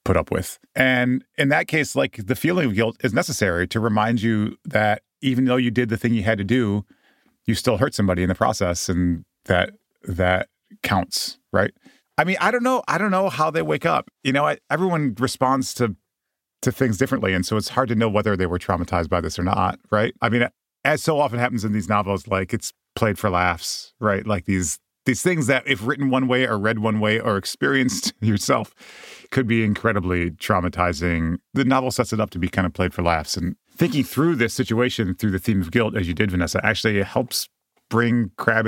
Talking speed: 215 wpm